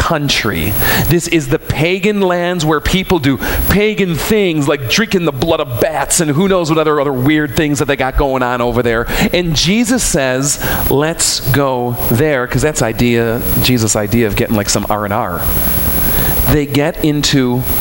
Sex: male